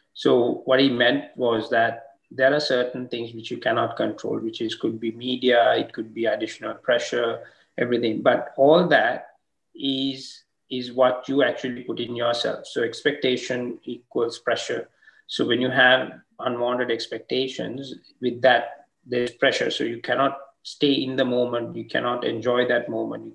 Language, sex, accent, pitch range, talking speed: English, male, Indian, 120-130 Hz, 160 wpm